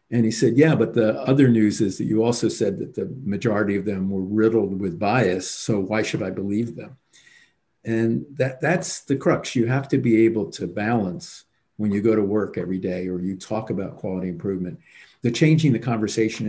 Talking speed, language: 205 wpm, English